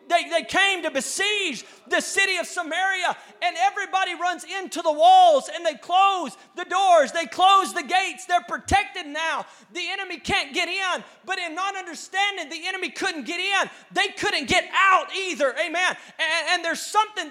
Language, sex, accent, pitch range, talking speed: English, male, American, 335-385 Hz, 175 wpm